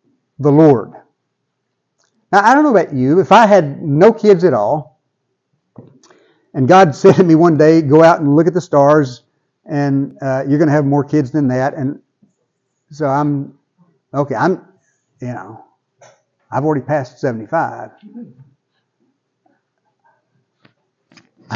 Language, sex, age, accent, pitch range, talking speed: English, male, 60-79, American, 140-200 Hz, 140 wpm